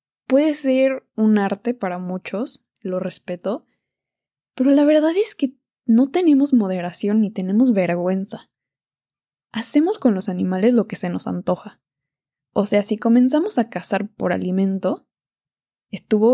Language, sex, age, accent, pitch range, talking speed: Spanish, female, 10-29, Mexican, 185-255 Hz, 135 wpm